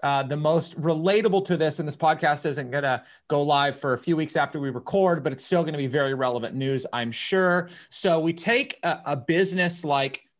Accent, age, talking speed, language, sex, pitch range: American, 30-49, 215 wpm, English, male, 155-205 Hz